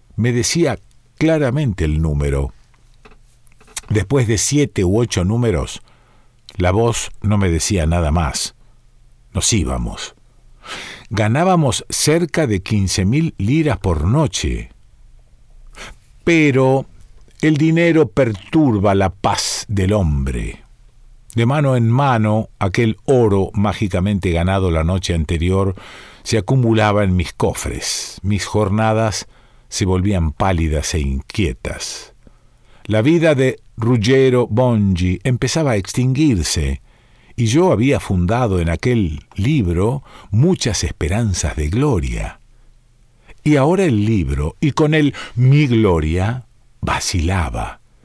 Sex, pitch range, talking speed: male, 95-125 Hz, 110 wpm